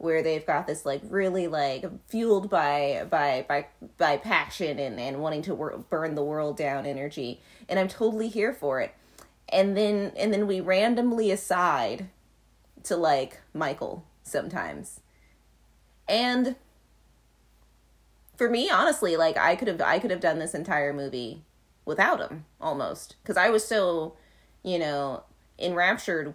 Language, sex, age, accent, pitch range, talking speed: English, female, 20-39, American, 155-235 Hz, 150 wpm